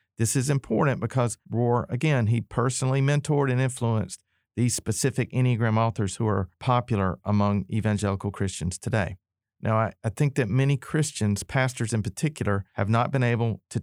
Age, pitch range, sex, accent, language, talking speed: 40-59, 95-120 Hz, male, American, English, 160 wpm